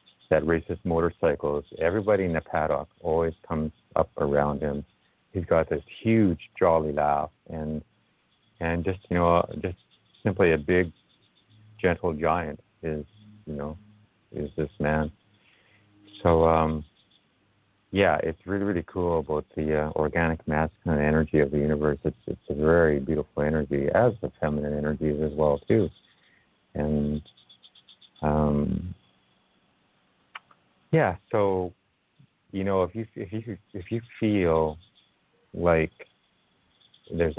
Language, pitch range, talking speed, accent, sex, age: English, 75-95 Hz, 125 wpm, American, male, 50-69